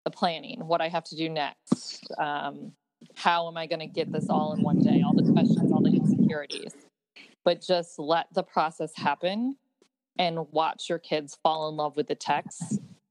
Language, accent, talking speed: English, American, 190 wpm